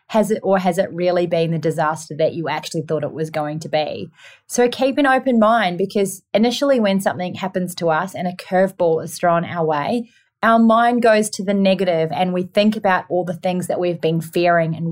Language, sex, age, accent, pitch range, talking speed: English, female, 30-49, Australian, 175-225 Hz, 220 wpm